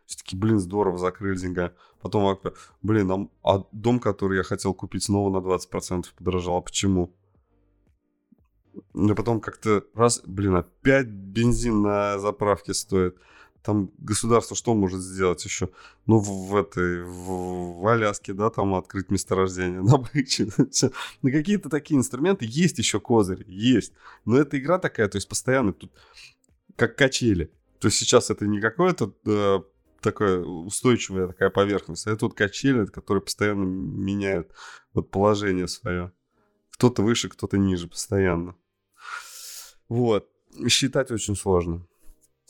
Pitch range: 90-110 Hz